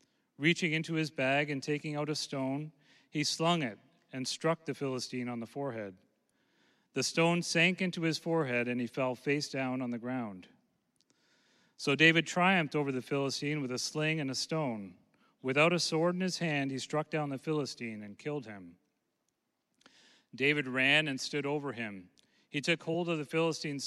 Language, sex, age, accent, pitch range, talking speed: English, male, 40-59, American, 130-160 Hz, 180 wpm